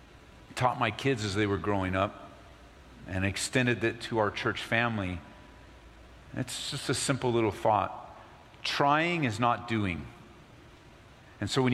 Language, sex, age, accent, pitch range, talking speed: English, male, 50-69, American, 90-120 Hz, 145 wpm